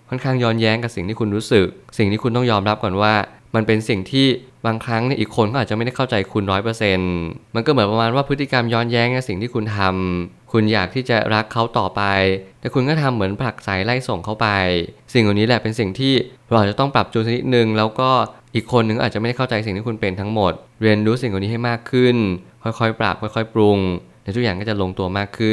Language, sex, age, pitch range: Thai, male, 20-39, 100-120 Hz